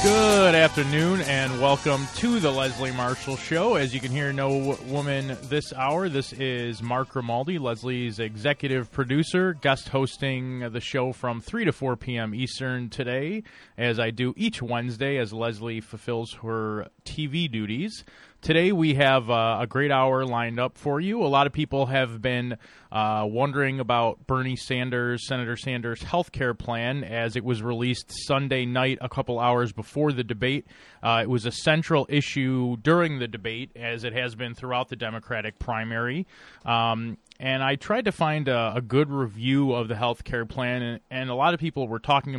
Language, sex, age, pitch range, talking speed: English, male, 30-49, 120-140 Hz, 175 wpm